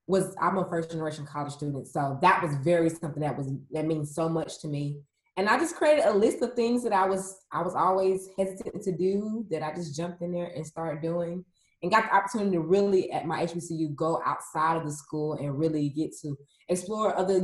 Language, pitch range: English, 150-190 Hz